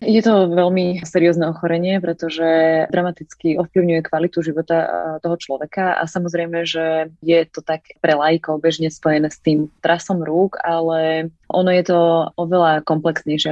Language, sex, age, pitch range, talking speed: Slovak, female, 20-39, 155-180 Hz, 140 wpm